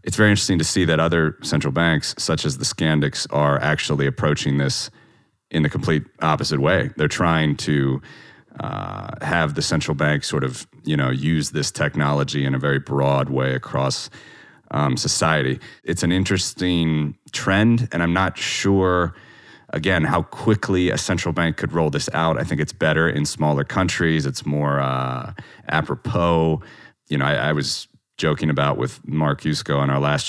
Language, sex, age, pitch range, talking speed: English, male, 30-49, 70-85 Hz, 170 wpm